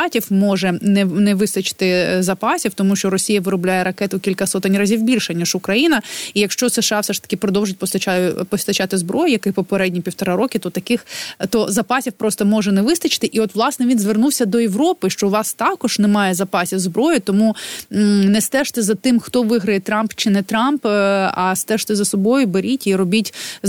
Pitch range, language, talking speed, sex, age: 190-225 Hz, Ukrainian, 175 wpm, female, 20-39